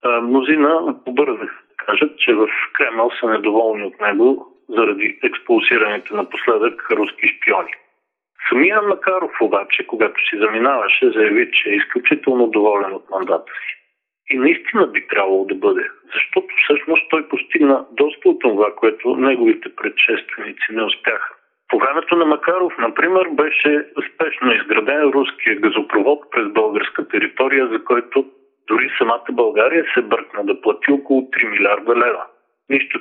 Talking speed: 135 wpm